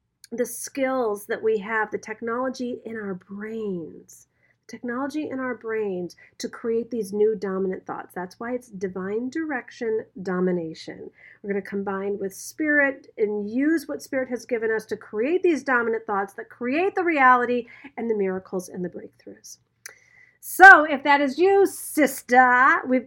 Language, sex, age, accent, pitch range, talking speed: English, female, 40-59, American, 195-260 Hz, 160 wpm